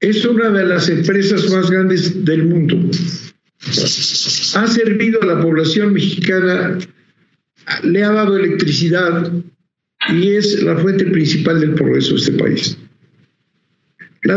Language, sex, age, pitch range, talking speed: Spanish, male, 60-79, 155-195 Hz, 125 wpm